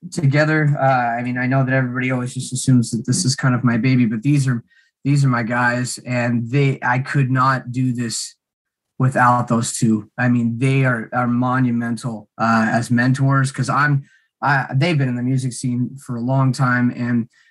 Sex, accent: male, American